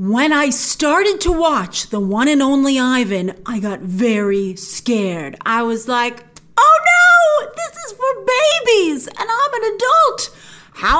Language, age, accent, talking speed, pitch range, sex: English, 40-59, American, 155 wpm, 210-340 Hz, female